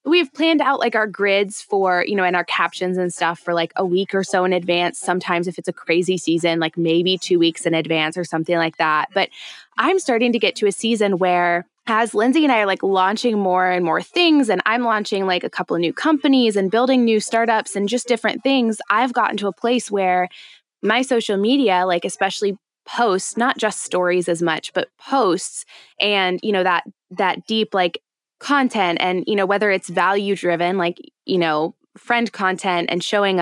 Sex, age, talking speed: female, 20-39, 210 wpm